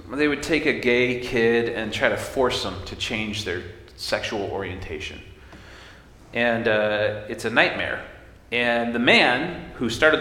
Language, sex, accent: English, male, American